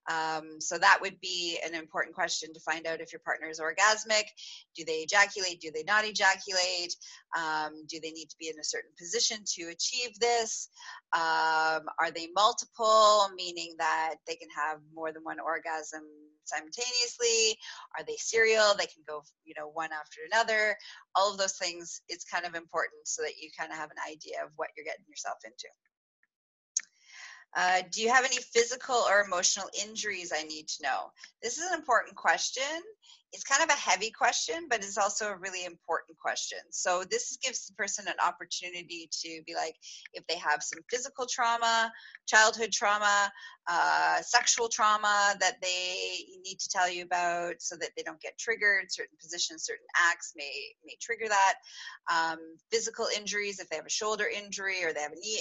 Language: English